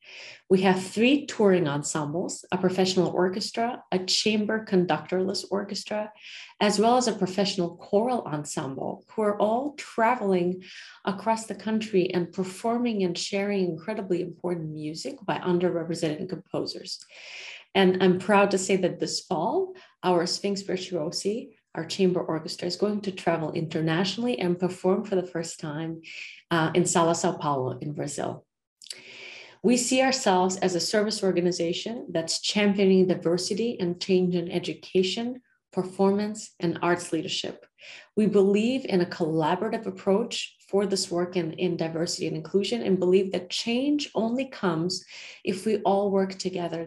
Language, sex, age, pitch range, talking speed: English, female, 40-59, 175-210 Hz, 140 wpm